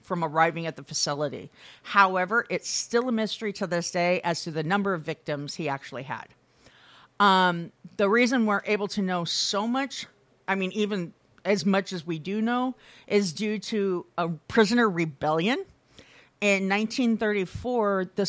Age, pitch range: 50-69, 175-215 Hz